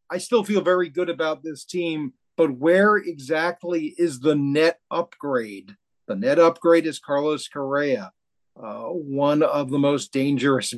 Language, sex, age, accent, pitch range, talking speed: English, male, 40-59, American, 130-170 Hz, 150 wpm